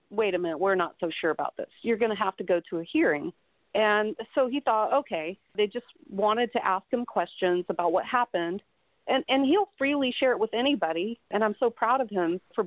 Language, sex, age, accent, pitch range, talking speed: English, female, 40-59, American, 185-235 Hz, 225 wpm